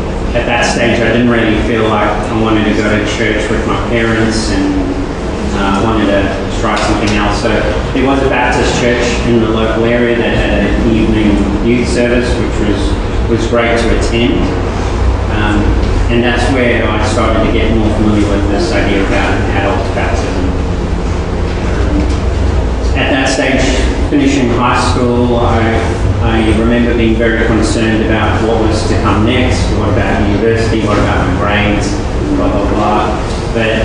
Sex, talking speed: male, 165 wpm